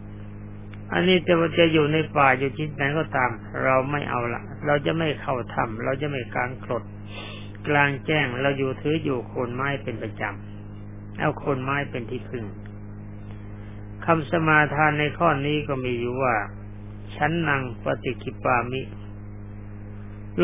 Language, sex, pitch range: Thai, male, 105-140 Hz